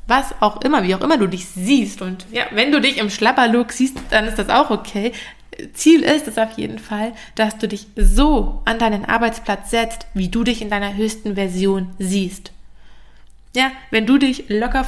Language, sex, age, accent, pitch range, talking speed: German, female, 20-39, German, 205-245 Hz, 195 wpm